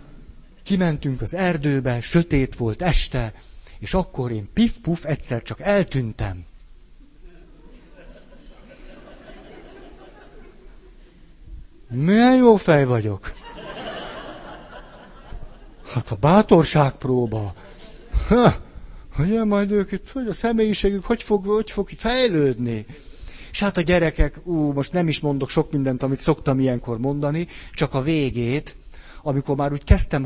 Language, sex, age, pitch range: Hungarian, male, 60-79, 120-175 Hz